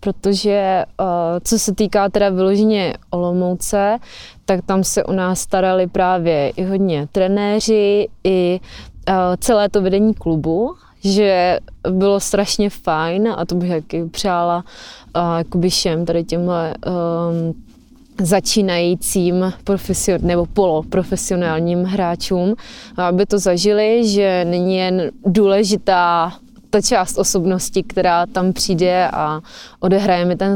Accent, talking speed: native, 110 wpm